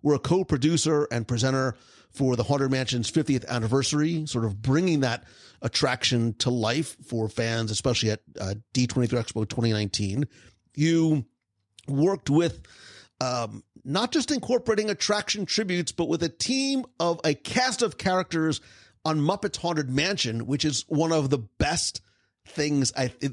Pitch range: 115-170 Hz